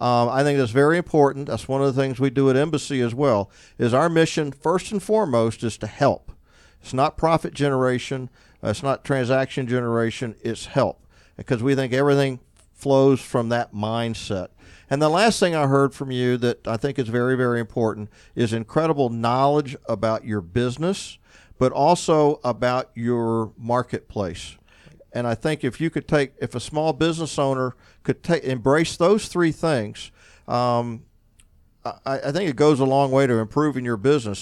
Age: 50-69